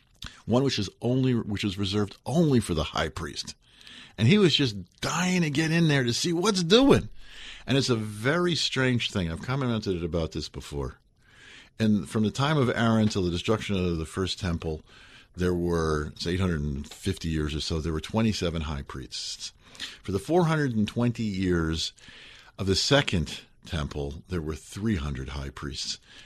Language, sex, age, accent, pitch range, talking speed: English, male, 50-69, American, 90-125 Hz, 170 wpm